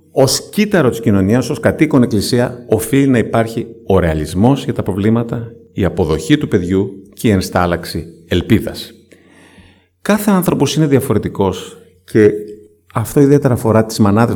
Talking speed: 140 wpm